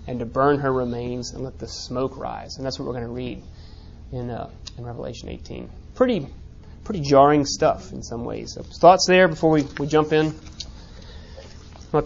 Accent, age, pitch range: American, 30-49, 120-150 Hz